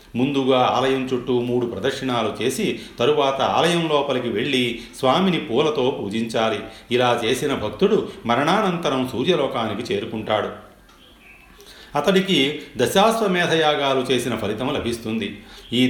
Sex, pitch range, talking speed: male, 115-145 Hz, 95 wpm